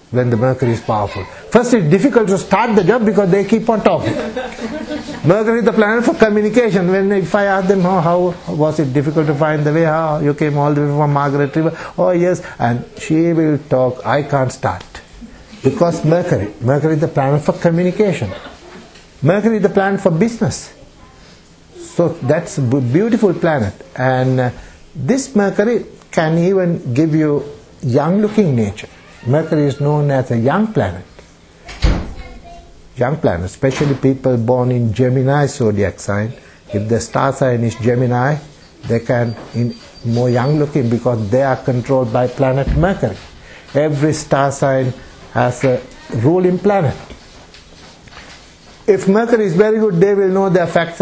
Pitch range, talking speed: 125-185 Hz, 160 wpm